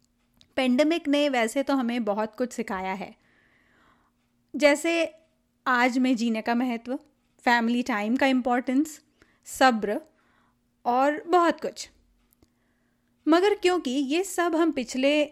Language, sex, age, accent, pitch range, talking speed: Hindi, female, 30-49, native, 240-305 Hz, 115 wpm